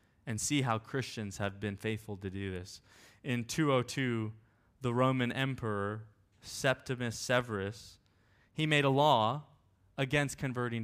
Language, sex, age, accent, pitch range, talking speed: English, male, 20-39, American, 100-135 Hz, 125 wpm